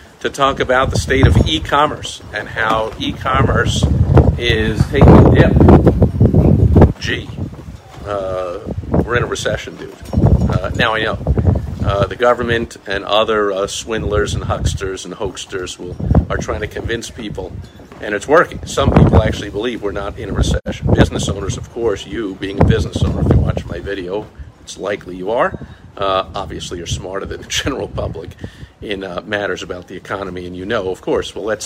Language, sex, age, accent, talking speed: English, male, 50-69, American, 175 wpm